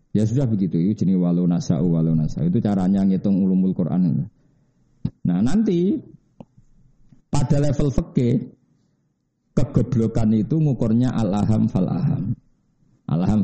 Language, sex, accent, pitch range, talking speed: Indonesian, male, native, 110-150 Hz, 105 wpm